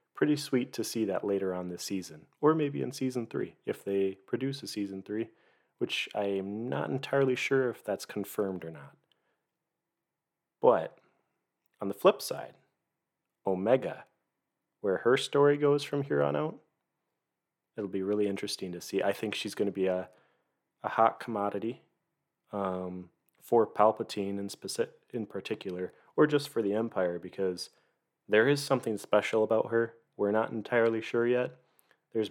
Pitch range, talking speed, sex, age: 100-125 Hz, 160 wpm, male, 30-49